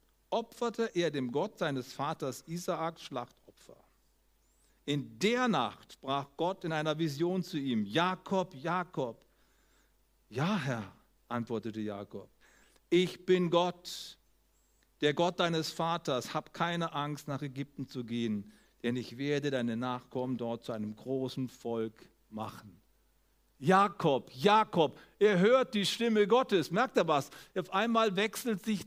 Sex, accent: male, German